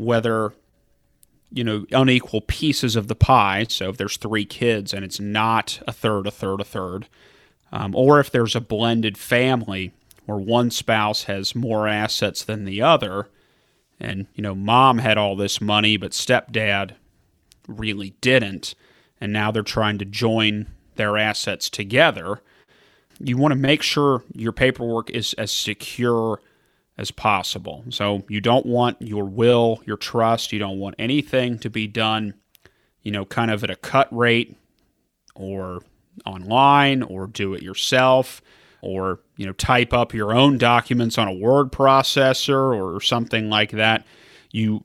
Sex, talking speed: male, 155 wpm